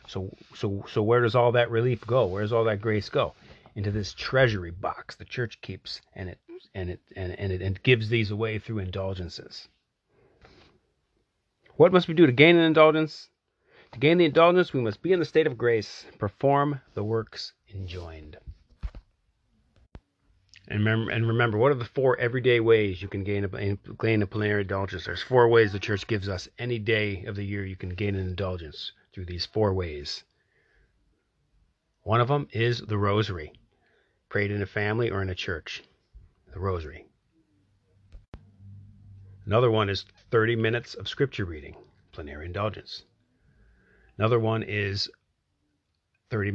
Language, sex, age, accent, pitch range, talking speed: English, male, 30-49, American, 95-120 Hz, 160 wpm